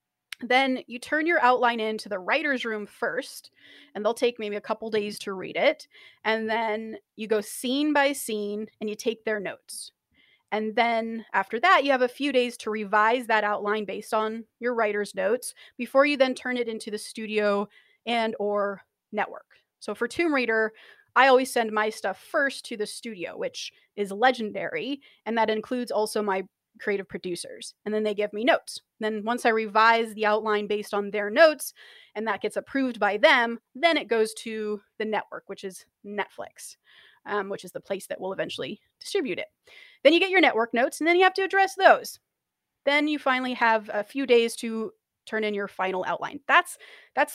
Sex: female